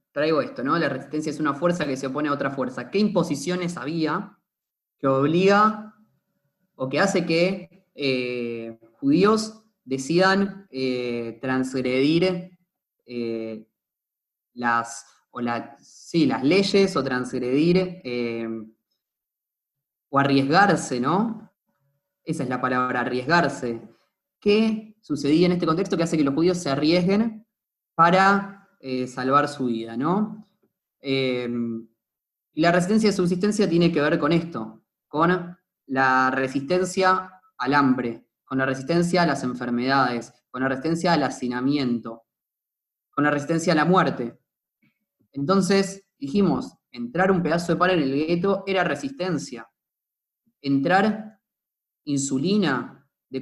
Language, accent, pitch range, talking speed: Spanish, Argentinian, 130-185 Hz, 120 wpm